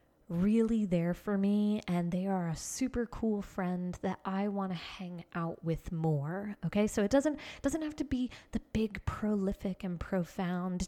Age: 20-39